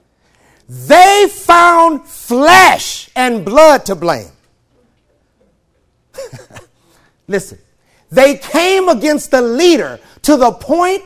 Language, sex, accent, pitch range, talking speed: English, male, American, 245-335 Hz, 85 wpm